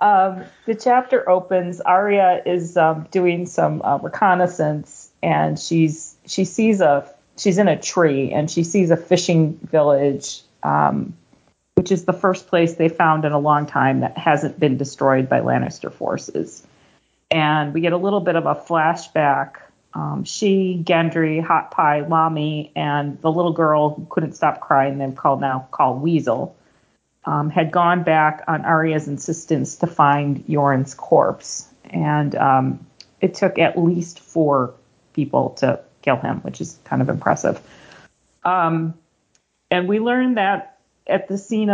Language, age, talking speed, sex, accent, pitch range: English, 40-59, 155 wpm, female, American, 150-180 Hz